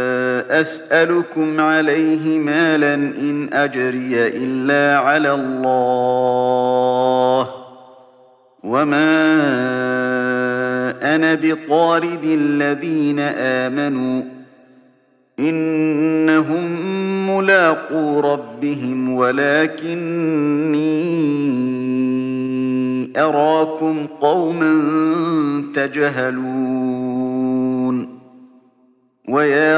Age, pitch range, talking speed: 50-69, 130-160 Hz, 40 wpm